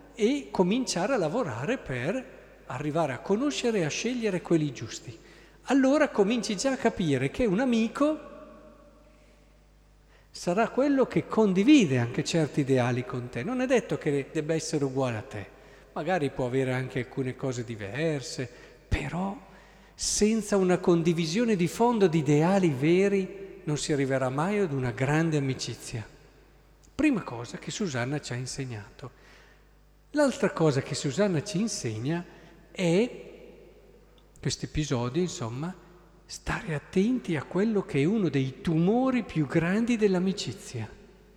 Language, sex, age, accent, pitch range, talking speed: Italian, male, 50-69, native, 135-200 Hz, 135 wpm